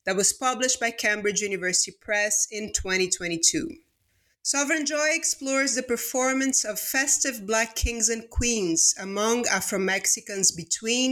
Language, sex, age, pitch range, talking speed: English, female, 30-49, 195-250 Hz, 125 wpm